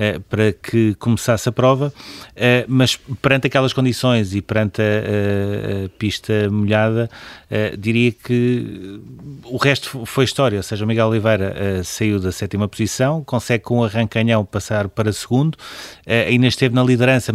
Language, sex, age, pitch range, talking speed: Portuguese, male, 30-49, 105-125 Hz, 140 wpm